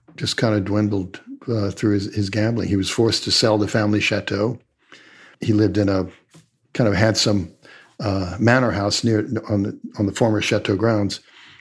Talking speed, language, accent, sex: 180 wpm, English, American, male